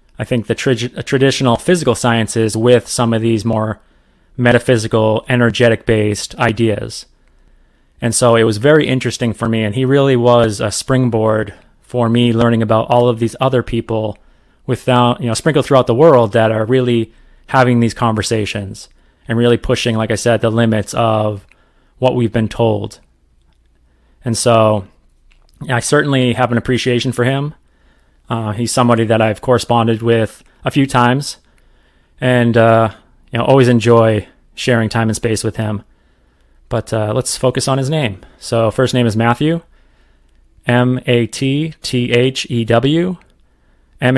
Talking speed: 150 wpm